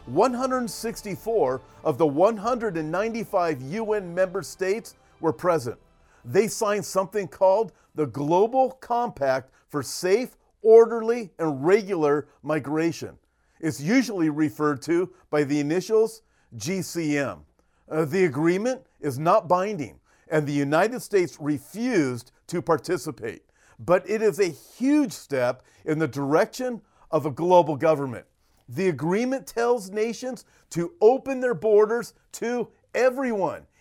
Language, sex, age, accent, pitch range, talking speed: English, male, 40-59, American, 160-230 Hz, 115 wpm